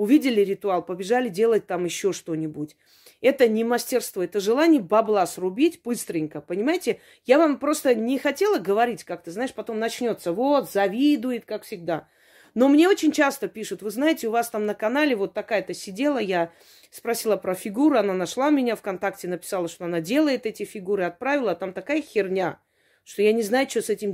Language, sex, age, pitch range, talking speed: Russian, female, 30-49, 190-260 Hz, 180 wpm